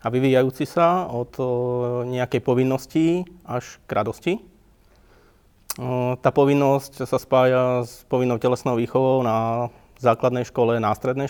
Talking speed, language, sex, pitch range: 115 wpm, Slovak, male, 120-145 Hz